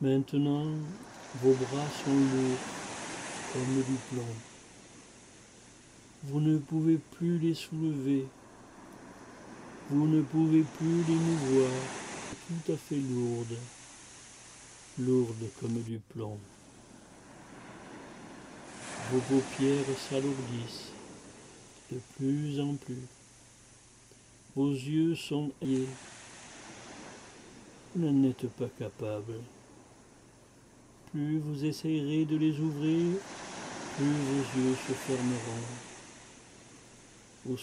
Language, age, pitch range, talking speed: English, 60-79, 125-150 Hz, 90 wpm